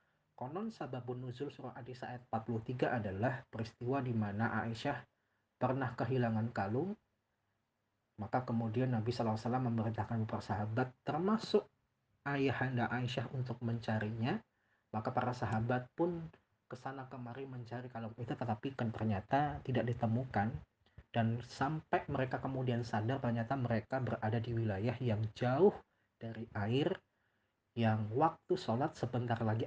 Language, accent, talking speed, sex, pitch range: Indonesian, native, 120 wpm, male, 110-130 Hz